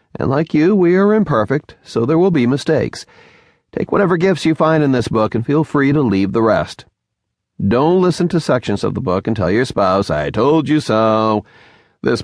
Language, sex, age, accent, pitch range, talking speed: English, male, 40-59, American, 100-155 Hz, 205 wpm